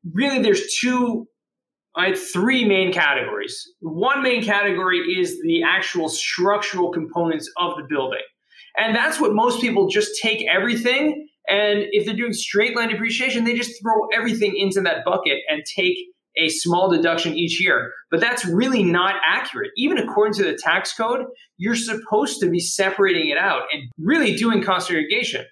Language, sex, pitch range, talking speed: English, male, 170-230 Hz, 165 wpm